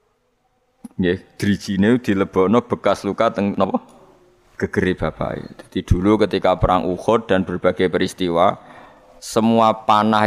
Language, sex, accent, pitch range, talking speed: Indonesian, male, native, 95-110 Hz, 125 wpm